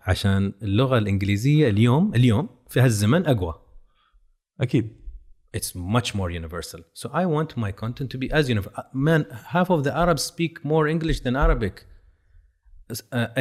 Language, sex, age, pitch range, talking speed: Arabic, male, 30-49, 90-135 Hz, 115 wpm